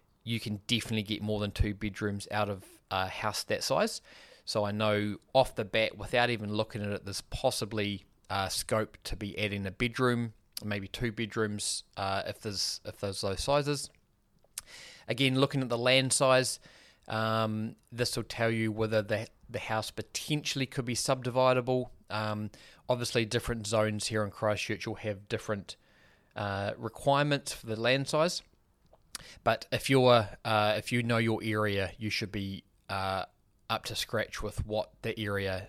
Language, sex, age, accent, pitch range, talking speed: English, male, 20-39, Australian, 105-125 Hz, 165 wpm